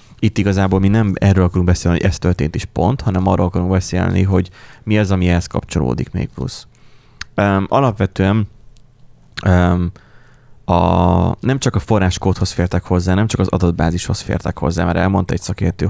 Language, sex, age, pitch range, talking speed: Hungarian, male, 20-39, 90-115 Hz, 170 wpm